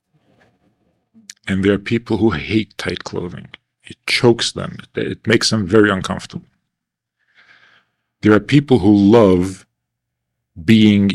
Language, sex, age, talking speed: English, male, 50-69, 120 wpm